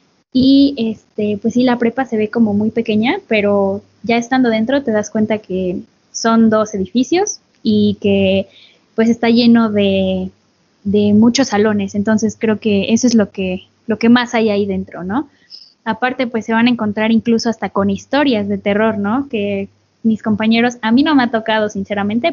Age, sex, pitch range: 10-29, female, 205-235 Hz